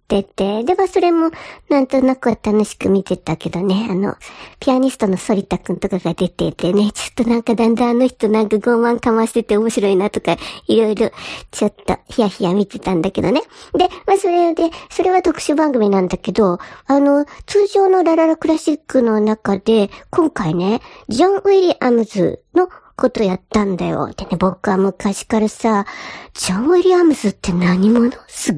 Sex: male